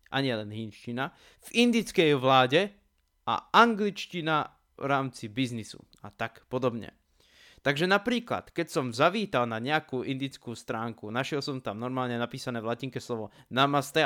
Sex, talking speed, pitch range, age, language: male, 135 wpm, 120-155 Hz, 20-39, Slovak